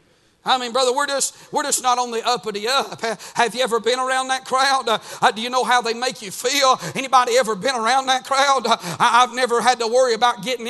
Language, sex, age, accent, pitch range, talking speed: English, male, 50-69, American, 190-255 Hz, 240 wpm